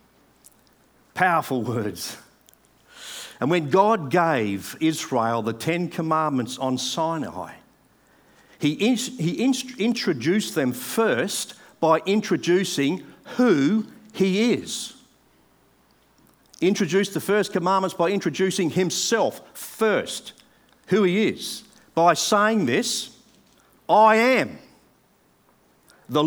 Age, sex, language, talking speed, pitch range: 50-69, male, English, 90 wpm, 160-210 Hz